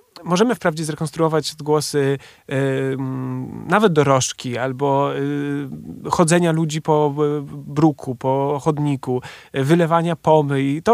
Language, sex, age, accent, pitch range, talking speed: Polish, male, 30-49, native, 140-175 Hz, 115 wpm